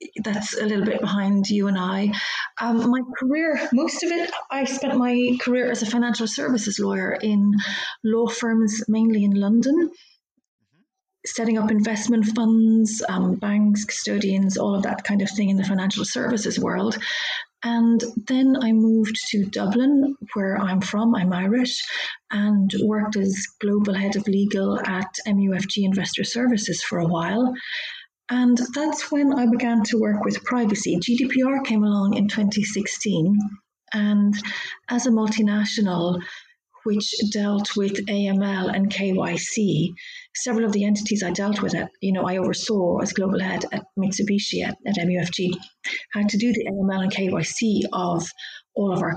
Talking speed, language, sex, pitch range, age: 155 wpm, English, female, 195-235 Hz, 30-49